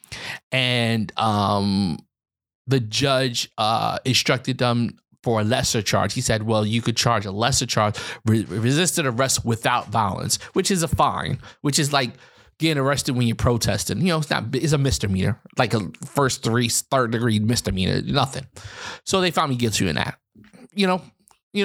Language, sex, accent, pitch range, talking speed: English, male, American, 115-150 Hz, 170 wpm